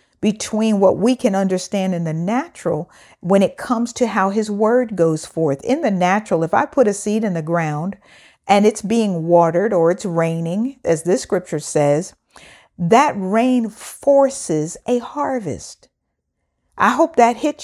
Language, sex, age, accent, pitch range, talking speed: English, female, 50-69, American, 185-255 Hz, 165 wpm